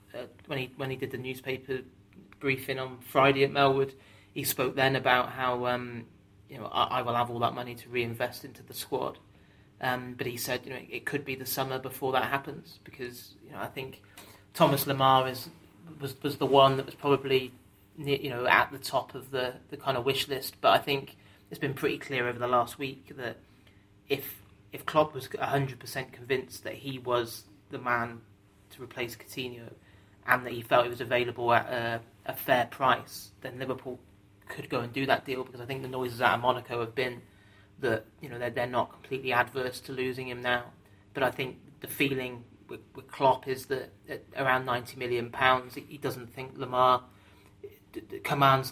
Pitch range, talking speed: 120-135 Hz, 205 wpm